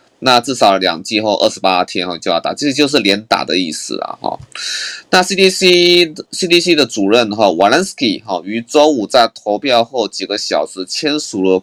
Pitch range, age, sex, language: 100-150 Hz, 20-39, male, Chinese